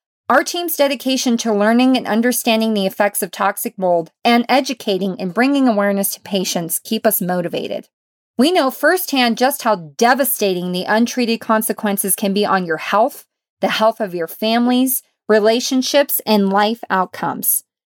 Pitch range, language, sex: 195-260 Hz, English, female